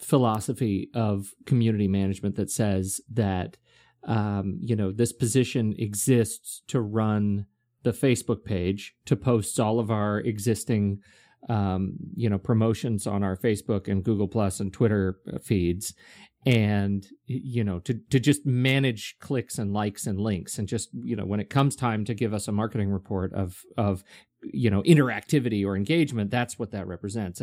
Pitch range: 100-130 Hz